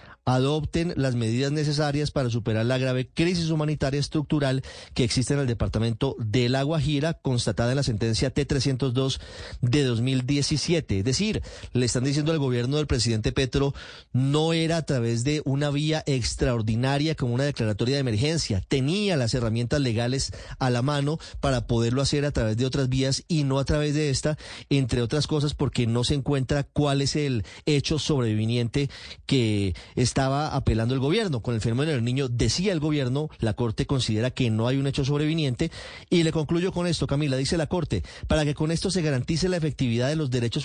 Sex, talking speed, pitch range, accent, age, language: male, 185 wpm, 125-150 Hz, Colombian, 30-49, Spanish